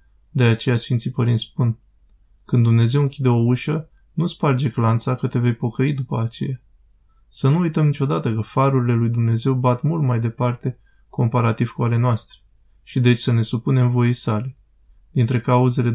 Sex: male